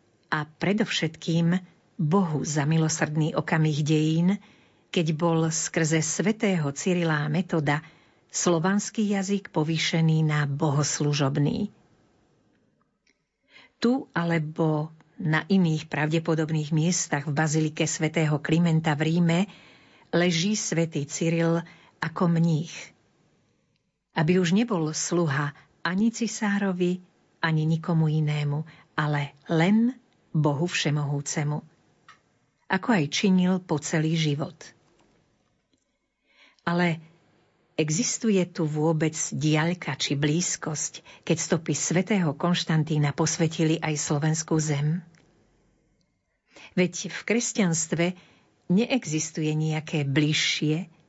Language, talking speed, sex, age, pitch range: Slovak, 90 wpm, female, 50-69, 155-175 Hz